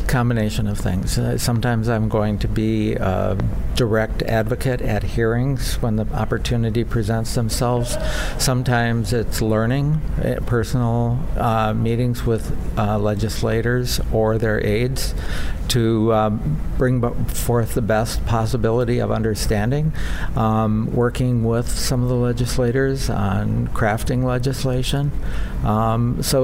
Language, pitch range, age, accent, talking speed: English, 105-120 Hz, 60-79, American, 120 wpm